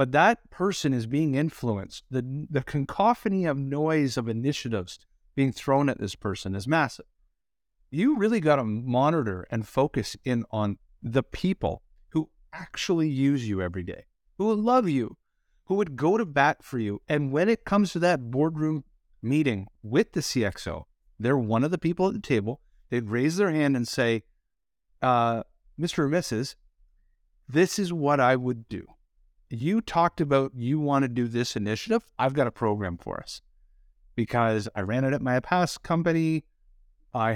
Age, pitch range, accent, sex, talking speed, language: 50-69, 115-160 Hz, American, male, 170 wpm, English